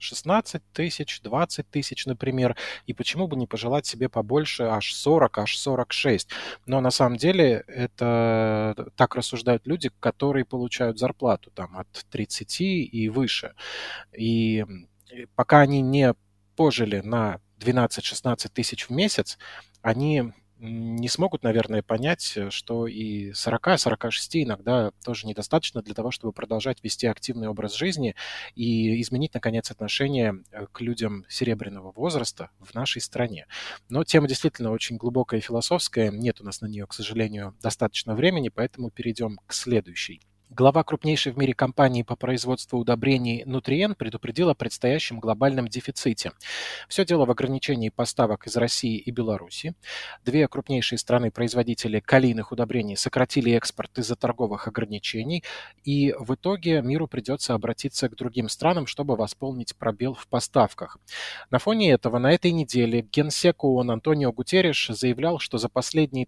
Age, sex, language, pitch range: 20-39, male, Russian, 115-140 Hz